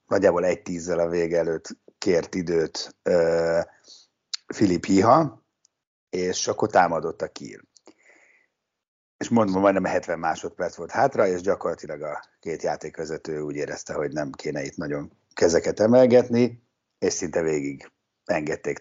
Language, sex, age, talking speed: Hungarian, male, 60-79, 135 wpm